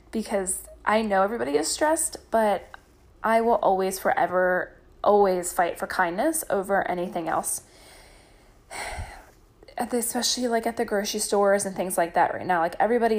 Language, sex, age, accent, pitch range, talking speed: English, female, 20-39, American, 180-210 Hz, 145 wpm